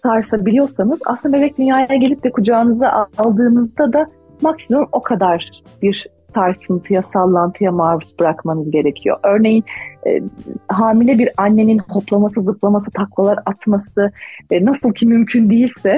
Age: 40-59